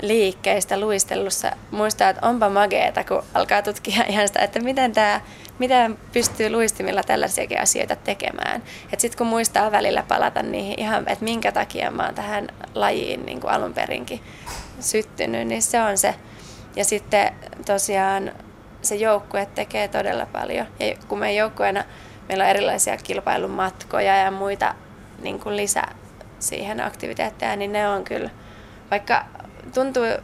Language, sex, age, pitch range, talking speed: Finnish, female, 20-39, 195-225 Hz, 145 wpm